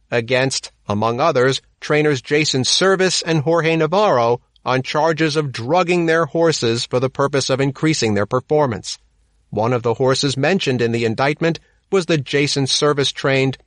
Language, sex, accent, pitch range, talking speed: English, male, American, 120-165 Hz, 150 wpm